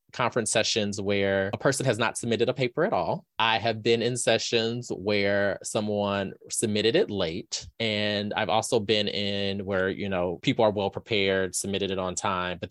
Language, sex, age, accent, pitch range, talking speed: English, male, 20-39, American, 110-160 Hz, 180 wpm